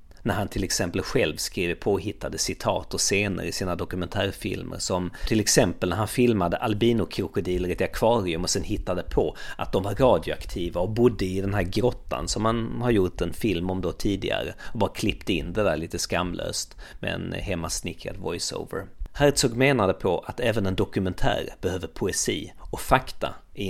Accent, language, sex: native, Swedish, male